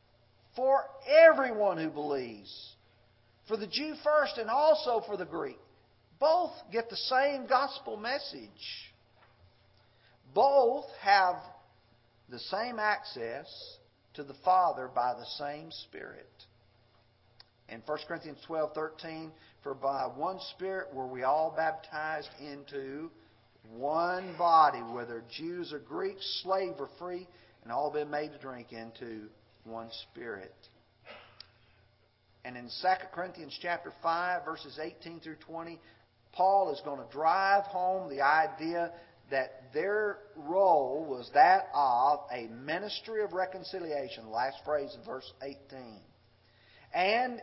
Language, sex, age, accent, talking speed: English, male, 50-69, American, 125 wpm